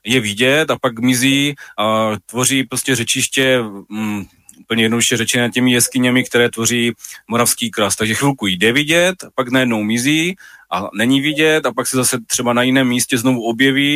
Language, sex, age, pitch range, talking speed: Slovak, male, 30-49, 115-135 Hz, 170 wpm